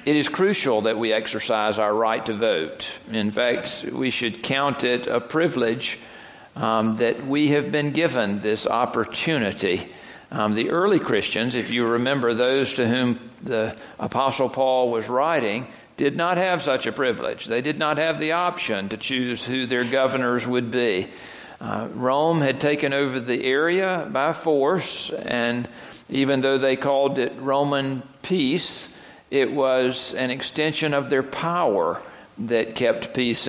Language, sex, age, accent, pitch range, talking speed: English, male, 50-69, American, 120-145 Hz, 155 wpm